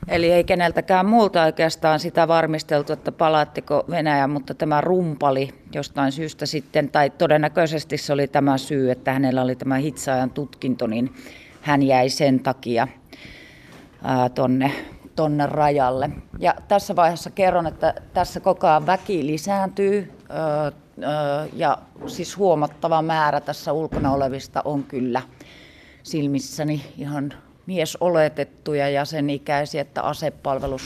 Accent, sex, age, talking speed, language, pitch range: native, female, 30-49, 120 wpm, Finnish, 140-165 Hz